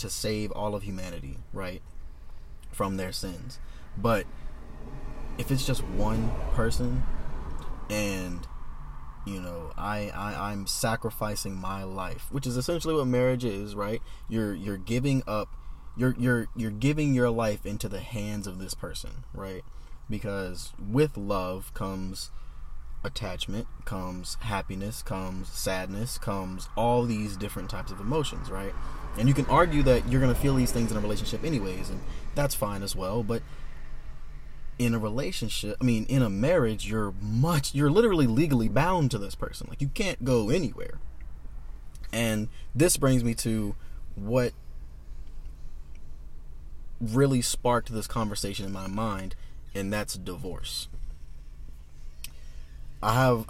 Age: 20-39